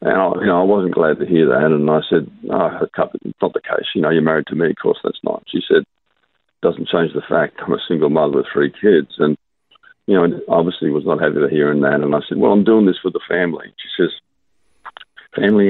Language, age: English, 50-69